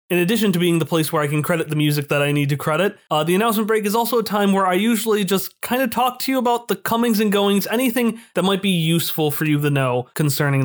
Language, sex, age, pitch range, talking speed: English, male, 30-49, 165-220 Hz, 275 wpm